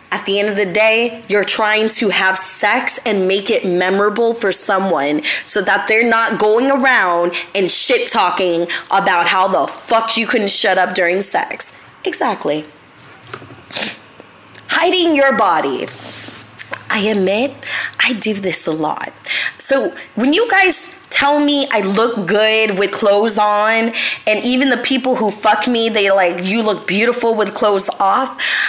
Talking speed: 155 wpm